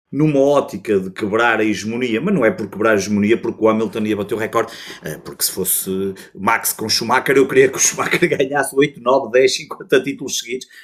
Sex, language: male, Portuguese